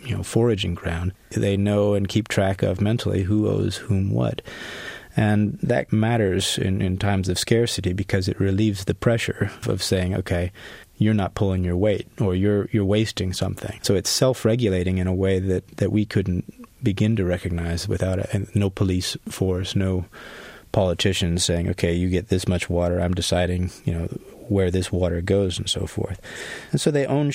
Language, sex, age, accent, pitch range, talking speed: English, male, 30-49, American, 95-110 Hz, 185 wpm